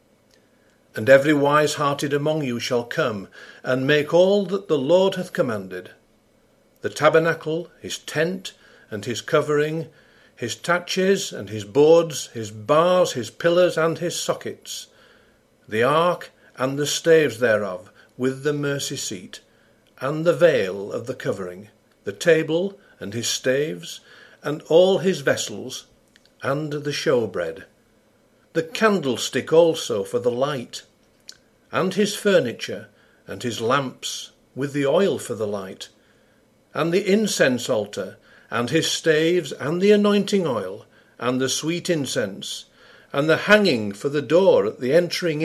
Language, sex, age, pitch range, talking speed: English, male, 50-69, 130-180 Hz, 135 wpm